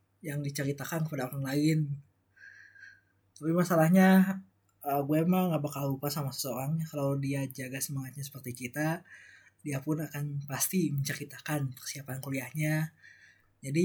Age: 20-39